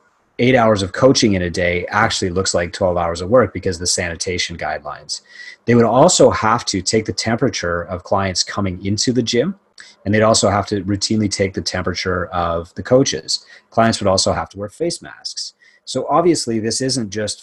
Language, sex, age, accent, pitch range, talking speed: English, male, 30-49, American, 95-115 Hz, 195 wpm